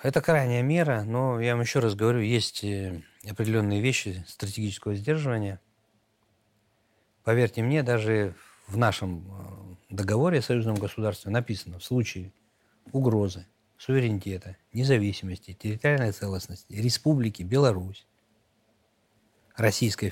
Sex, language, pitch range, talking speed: male, Russian, 100-125 Hz, 100 wpm